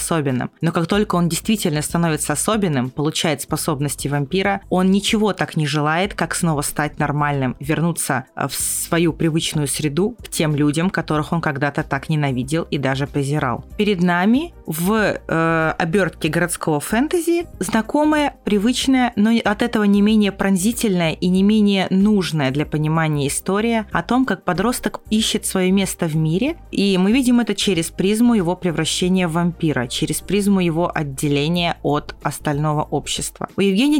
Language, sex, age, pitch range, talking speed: Russian, female, 30-49, 160-210 Hz, 155 wpm